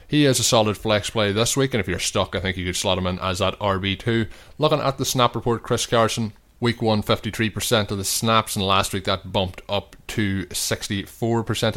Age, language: 30-49, English